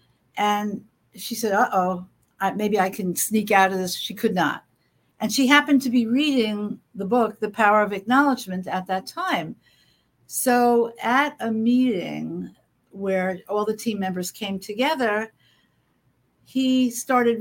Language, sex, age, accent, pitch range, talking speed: English, female, 60-79, American, 195-240 Hz, 145 wpm